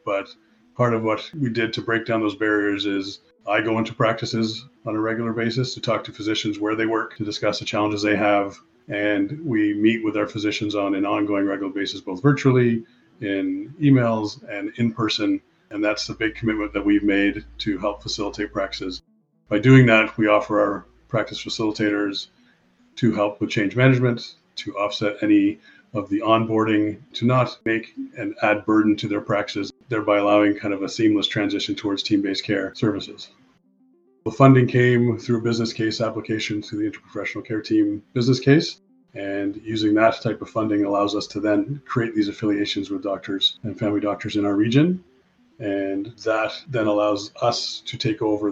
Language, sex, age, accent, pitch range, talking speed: English, male, 40-59, American, 105-120 Hz, 180 wpm